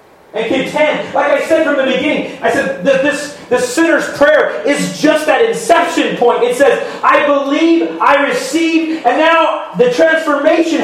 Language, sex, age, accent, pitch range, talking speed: English, male, 30-49, American, 175-290 Hz, 165 wpm